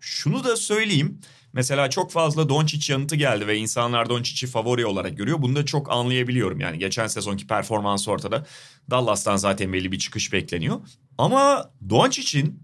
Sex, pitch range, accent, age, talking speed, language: male, 115-160 Hz, native, 30-49, 150 wpm, Turkish